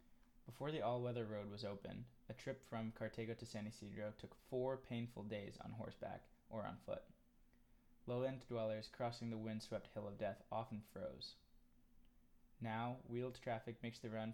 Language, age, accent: English, 20-39, American